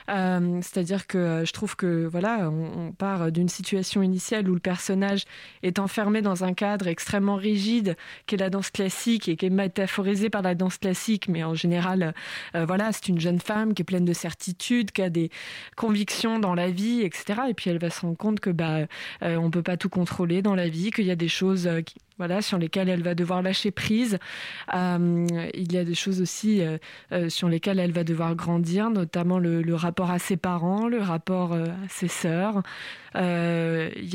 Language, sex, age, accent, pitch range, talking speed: French, female, 20-39, French, 175-205 Hz, 215 wpm